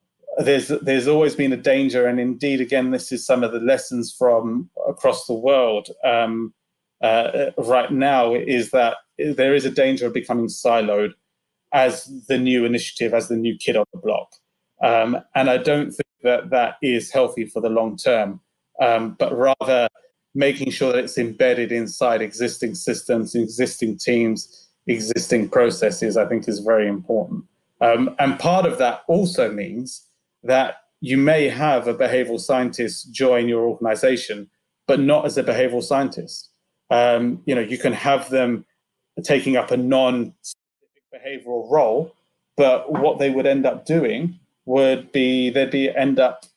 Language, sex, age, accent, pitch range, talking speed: English, male, 30-49, British, 120-140 Hz, 160 wpm